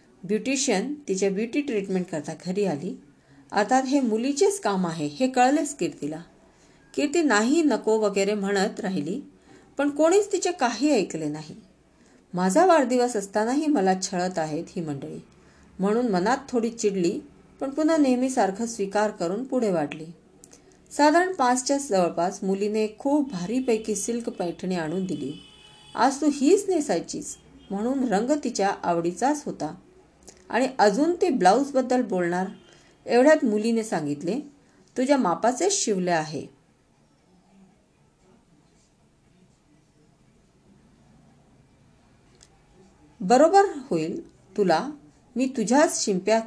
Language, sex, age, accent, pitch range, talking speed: Hindi, female, 40-59, native, 180-270 Hz, 75 wpm